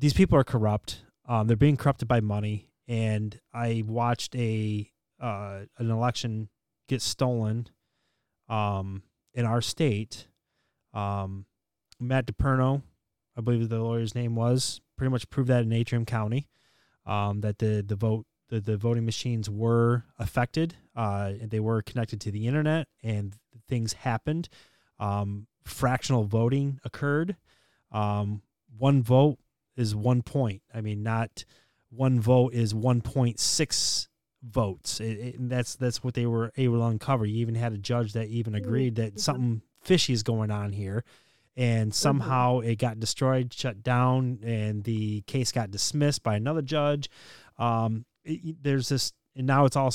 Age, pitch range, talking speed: 20-39, 110-130 Hz, 155 wpm